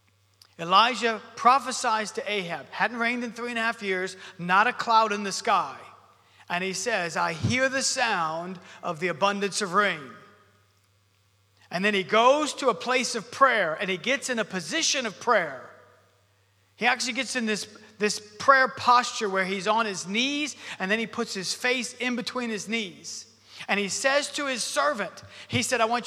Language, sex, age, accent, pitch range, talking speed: English, male, 40-59, American, 170-250 Hz, 185 wpm